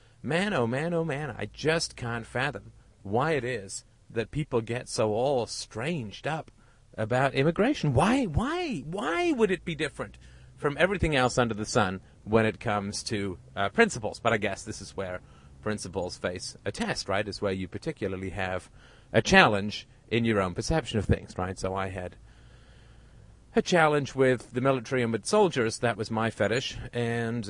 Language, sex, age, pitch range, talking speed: English, male, 40-59, 95-125 Hz, 175 wpm